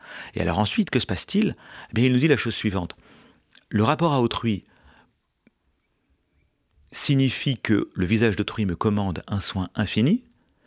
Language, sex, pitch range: French, male, 95-130 Hz